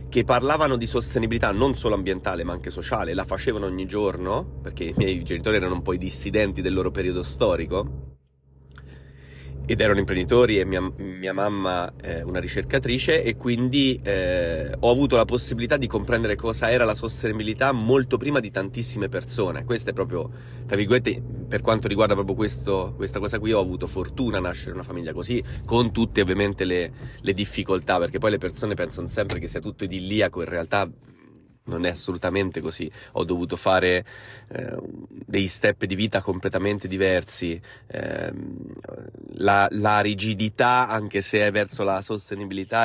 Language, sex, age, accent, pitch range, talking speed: Italian, male, 30-49, native, 95-120 Hz, 170 wpm